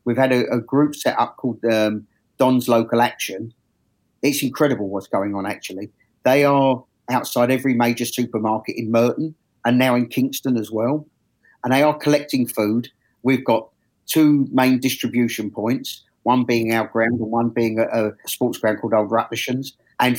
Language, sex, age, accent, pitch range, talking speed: English, male, 50-69, British, 115-130 Hz, 170 wpm